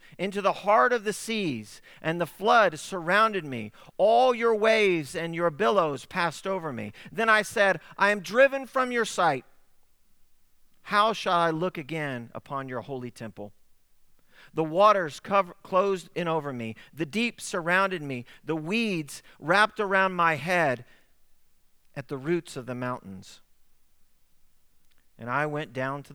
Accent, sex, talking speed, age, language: American, male, 150 wpm, 40-59, English